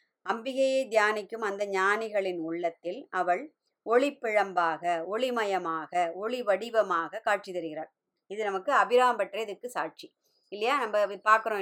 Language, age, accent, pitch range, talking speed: Tamil, 30-49, native, 185-235 Hz, 105 wpm